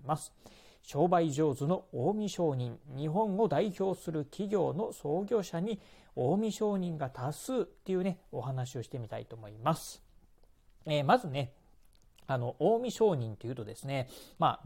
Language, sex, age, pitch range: Japanese, male, 40-59, 125-190 Hz